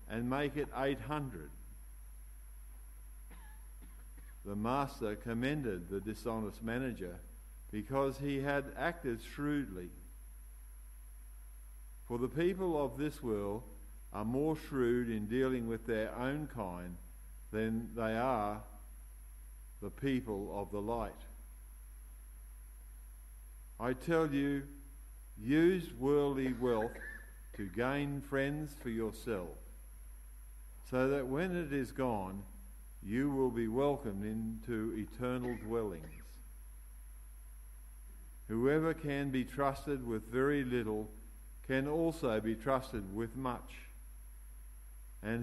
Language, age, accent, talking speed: English, 50-69, Australian, 100 wpm